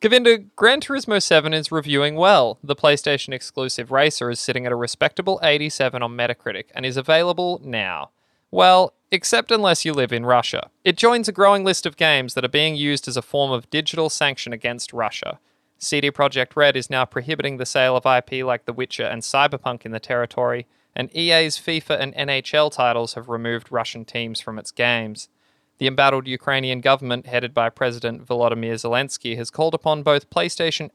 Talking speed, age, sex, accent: 180 wpm, 20-39, male, Australian